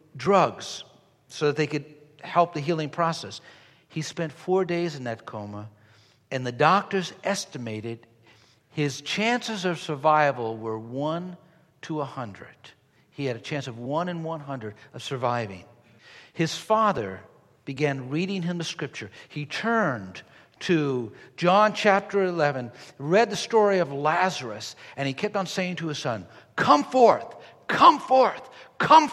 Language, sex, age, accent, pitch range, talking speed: English, male, 60-79, American, 135-190 Hz, 145 wpm